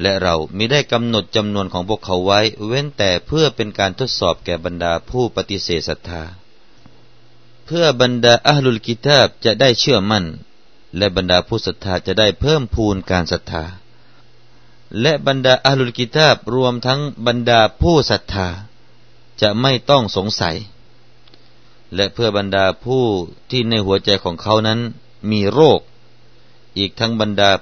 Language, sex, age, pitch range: Thai, male, 30-49, 95-125 Hz